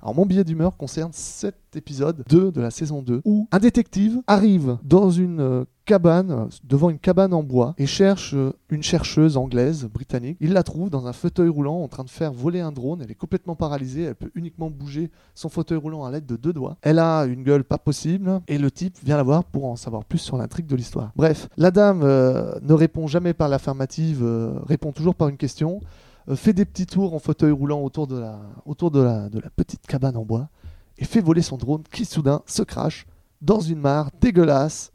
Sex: male